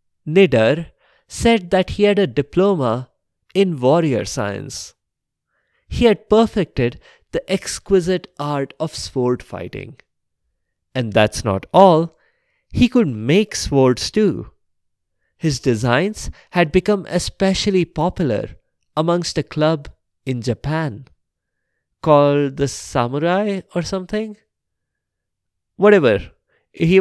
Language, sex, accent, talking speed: English, male, Indian, 100 wpm